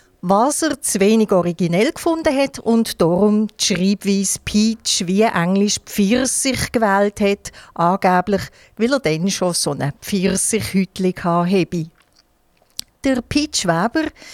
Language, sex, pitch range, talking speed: German, female, 180-230 Hz, 120 wpm